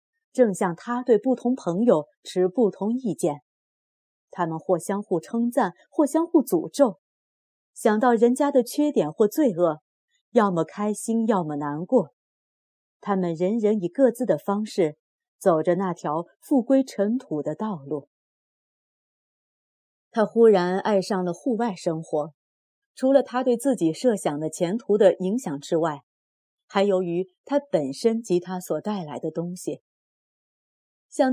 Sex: female